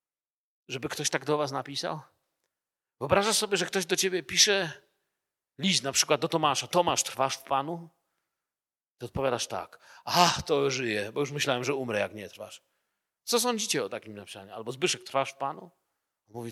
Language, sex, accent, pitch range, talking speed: Polish, male, native, 130-195 Hz, 170 wpm